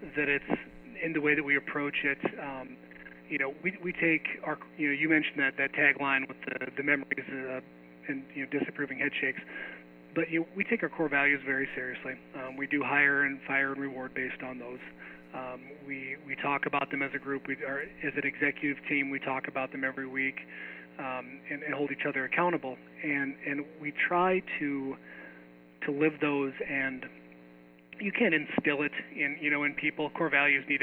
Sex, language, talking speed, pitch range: male, English, 200 wpm, 130-145 Hz